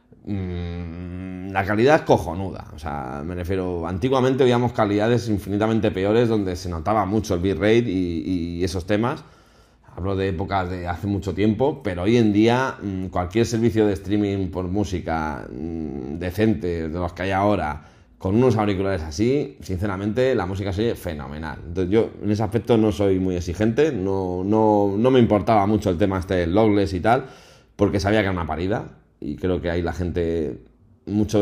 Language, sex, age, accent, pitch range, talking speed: Spanish, male, 30-49, Spanish, 90-110 Hz, 175 wpm